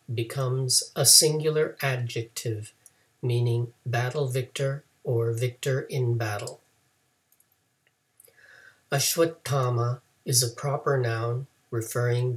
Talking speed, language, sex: 80 wpm, English, male